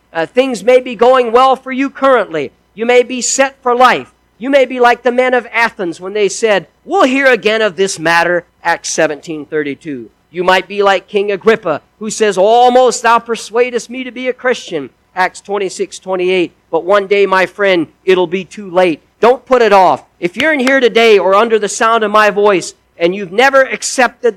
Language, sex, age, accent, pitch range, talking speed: English, male, 50-69, American, 180-245 Hz, 200 wpm